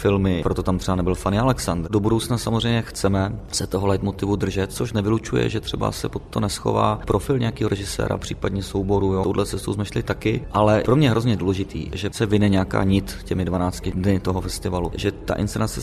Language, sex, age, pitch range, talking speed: Czech, male, 30-49, 90-105 Hz, 195 wpm